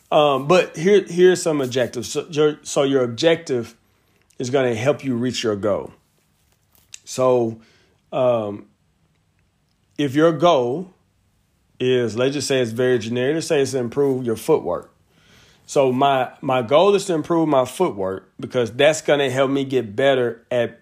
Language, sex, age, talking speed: English, male, 40-59, 160 wpm